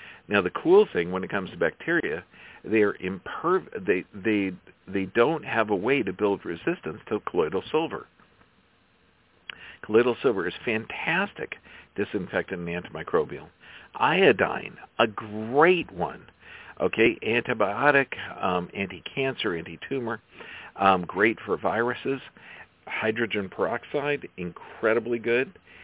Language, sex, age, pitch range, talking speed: English, male, 50-69, 95-120 Hz, 100 wpm